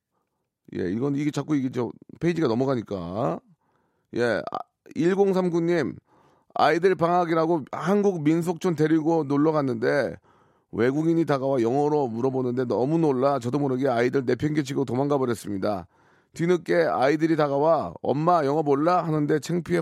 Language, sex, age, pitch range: Korean, male, 40-59, 125-175 Hz